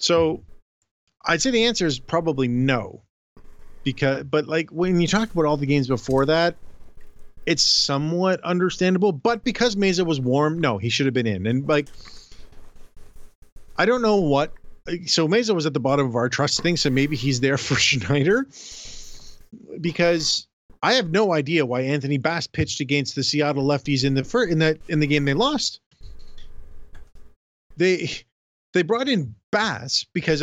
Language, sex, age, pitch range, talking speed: English, male, 40-59, 120-170 Hz, 170 wpm